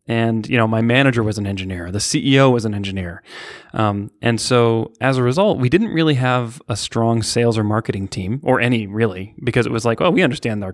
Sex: male